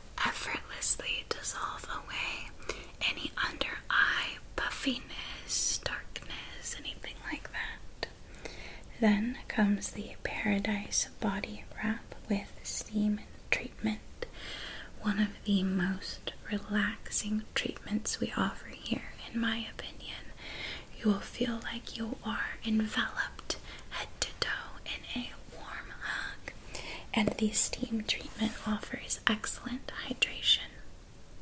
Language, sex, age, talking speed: English, female, 20-39, 100 wpm